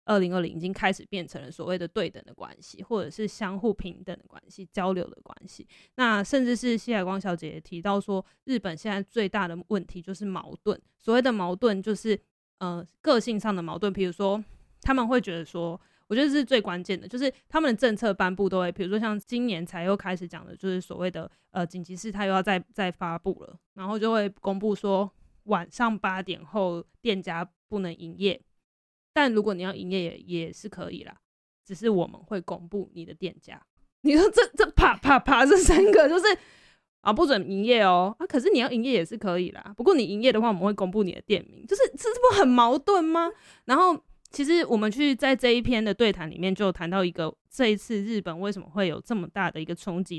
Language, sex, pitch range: Chinese, female, 180-230 Hz